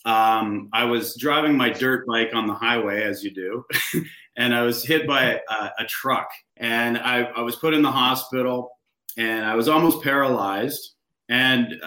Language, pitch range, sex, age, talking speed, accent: English, 115-145 Hz, male, 30-49, 175 wpm, American